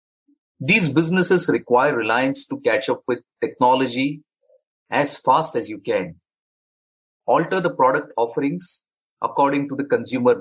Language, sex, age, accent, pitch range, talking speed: English, male, 30-49, Indian, 130-180 Hz, 125 wpm